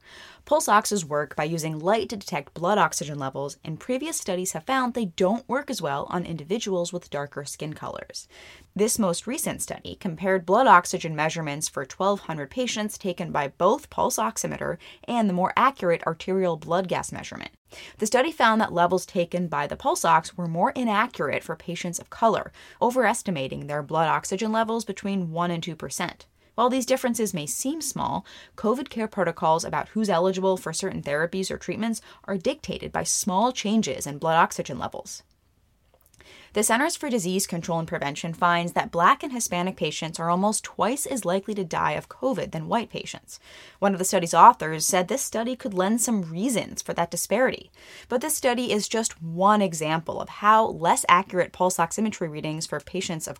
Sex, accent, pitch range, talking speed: female, American, 170-220 Hz, 180 wpm